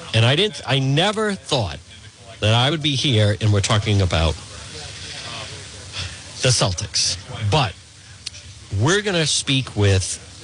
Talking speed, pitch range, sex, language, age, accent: 130 wpm, 100-125 Hz, male, English, 50-69, American